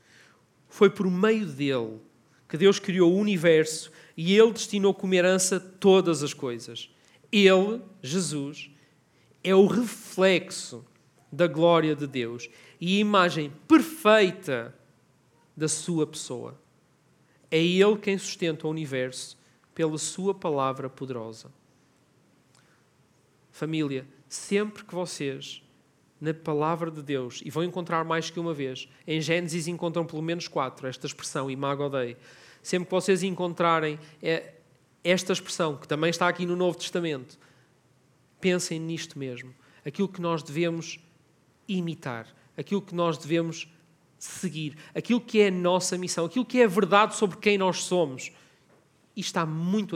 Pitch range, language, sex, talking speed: 140-185 Hz, Portuguese, male, 135 wpm